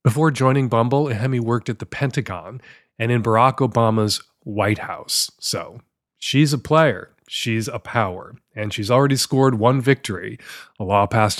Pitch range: 105-140 Hz